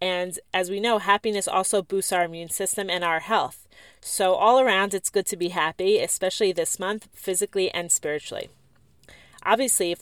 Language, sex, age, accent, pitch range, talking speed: English, female, 30-49, American, 175-210 Hz, 175 wpm